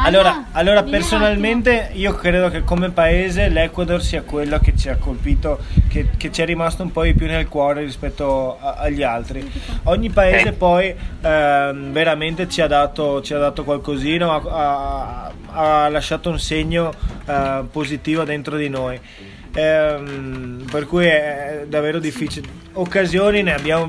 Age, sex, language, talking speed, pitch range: 20-39, male, Italian, 155 wpm, 150-180 Hz